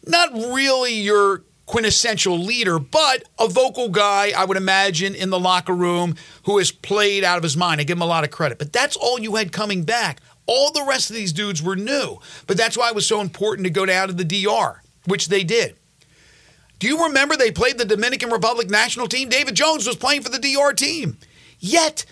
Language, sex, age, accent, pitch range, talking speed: English, male, 50-69, American, 185-240 Hz, 215 wpm